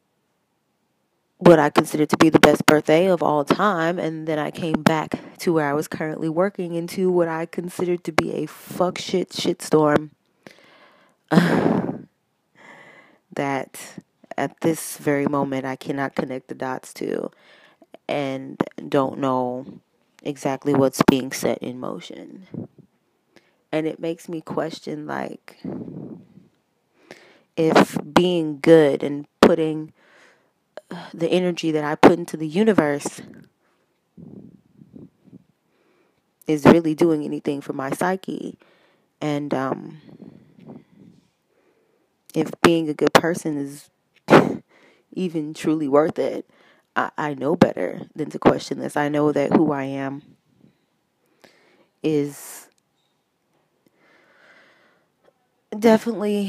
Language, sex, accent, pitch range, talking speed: English, female, American, 145-180 Hz, 115 wpm